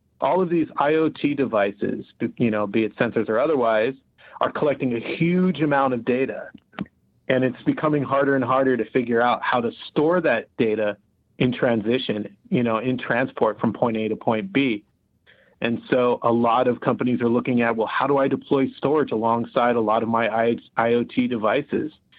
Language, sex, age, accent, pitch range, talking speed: English, male, 40-59, American, 110-125 Hz, 180 wpm